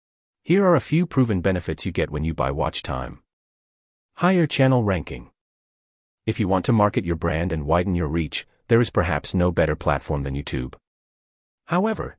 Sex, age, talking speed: male, 30-49, 175 wpm